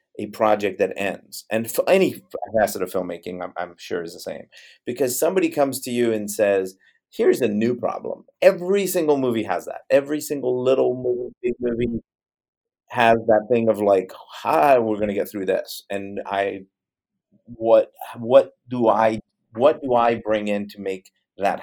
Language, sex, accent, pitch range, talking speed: English, male, American, 100-135 Hz, 170 wpm